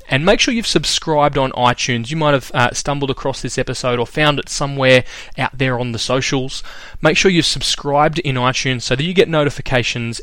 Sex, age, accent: male, 20-39, Australian